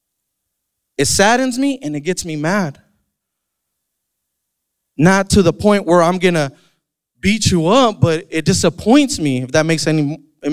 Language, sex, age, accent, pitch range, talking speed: English, male, 20-39, American, 165-230 Hz, 155 wpm